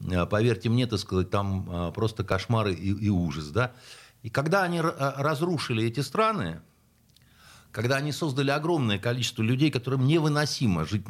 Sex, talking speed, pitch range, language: male, 125 wpm, 105-155 Hz, Russian